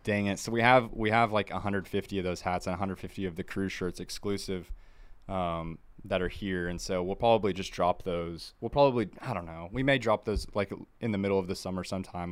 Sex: male